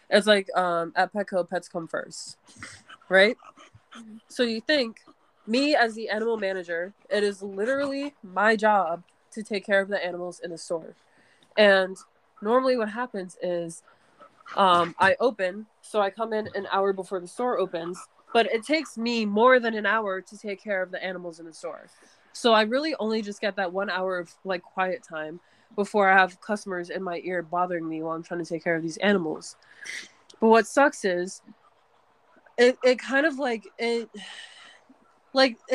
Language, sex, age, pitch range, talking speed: English, female, 20-39, 185-235 Hz, 180 wpm